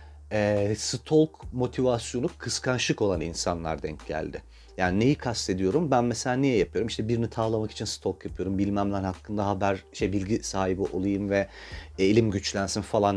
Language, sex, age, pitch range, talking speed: Turkish, male, 40-59, 105-160 Hz, 140 wpm